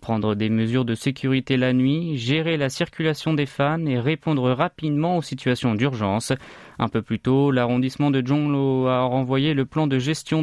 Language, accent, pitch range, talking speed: French, French, 125-155 Hz, 180 wpm